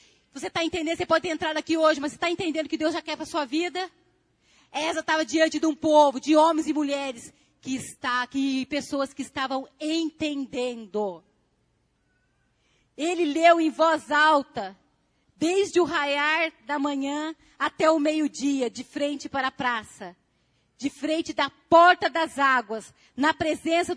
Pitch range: 255-315 Hz